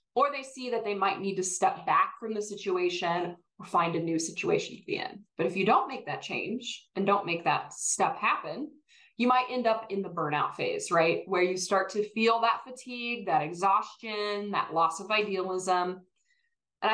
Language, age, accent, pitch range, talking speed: English, 20-39, American, 185-260 Hz, 200 wpm